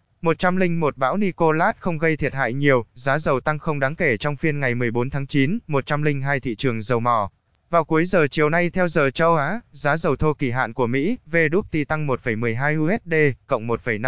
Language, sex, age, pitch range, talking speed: Vietnamese, male, 20-39, 130-165 Hz, 195 wpm